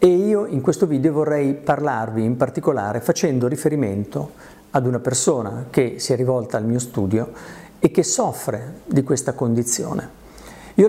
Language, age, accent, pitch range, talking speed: Italian, 50-69, native, 125-170 Hz, 155 wpm